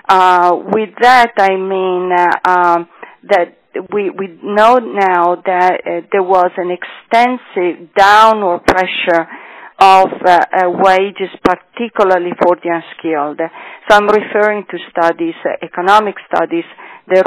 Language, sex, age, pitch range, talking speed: English, female, 40-59, 175-210 Hz, 130 wpm